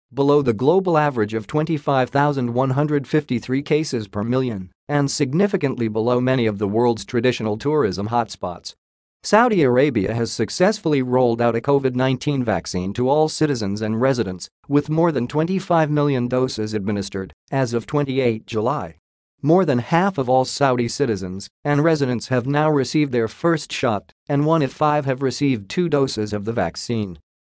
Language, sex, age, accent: English, male, 50-69, American